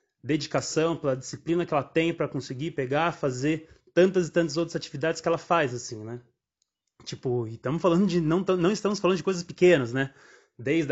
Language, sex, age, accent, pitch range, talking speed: Portuguese, male, 20-39, Brazilian, 135-165 Hz, 185 wpm